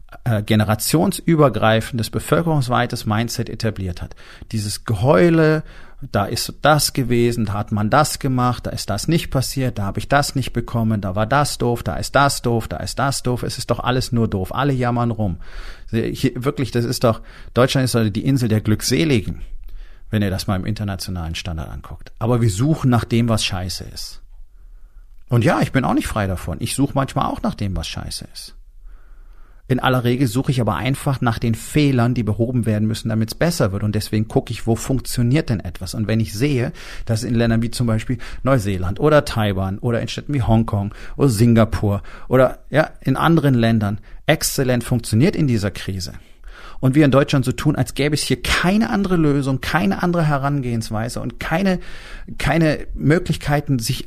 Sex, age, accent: male, 40-59, German